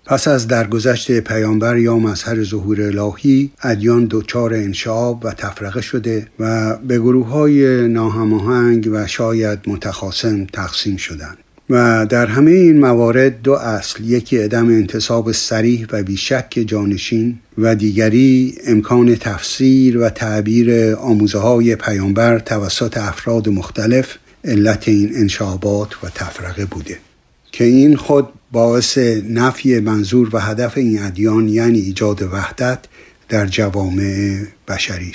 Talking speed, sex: 125 wpm, male